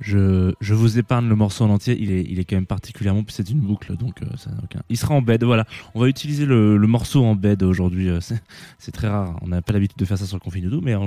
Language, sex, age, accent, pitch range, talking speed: French, male, 20-39, French, 95-130 Hz, 300 wpm